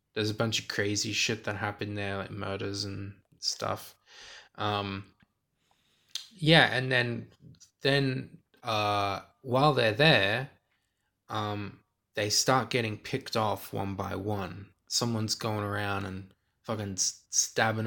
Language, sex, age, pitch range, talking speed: English, male, 20-39, 100-120 Hz, 125 wpm